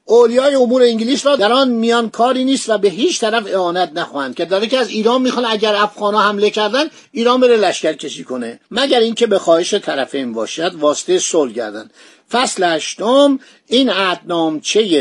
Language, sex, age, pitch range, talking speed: Persian, male, 50-69, 170-235 Hz, 170 wpm